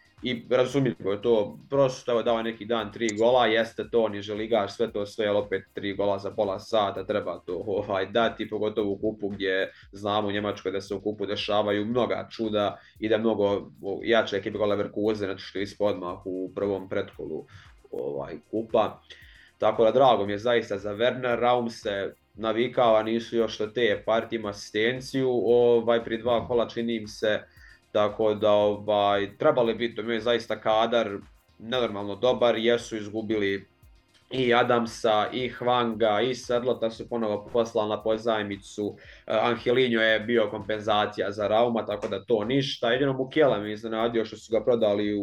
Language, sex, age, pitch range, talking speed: Croatian, male, 20-39, 105-120 Hz, 160 wpm